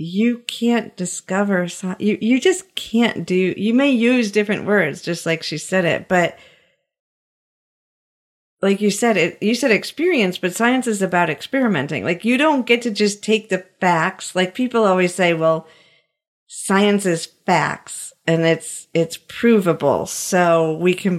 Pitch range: 165-210 Hz